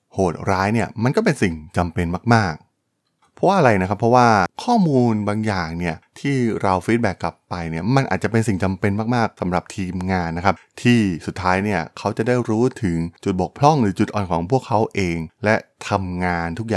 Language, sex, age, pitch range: Thai, male, 20-39, 90-115 Hz